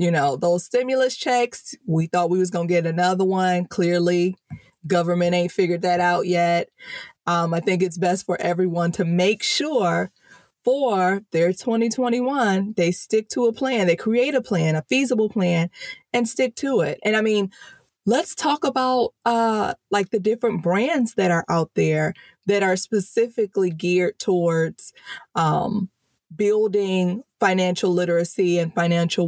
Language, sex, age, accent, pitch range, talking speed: English, female, 20-39, American, 175-220 Hz, 155 wpm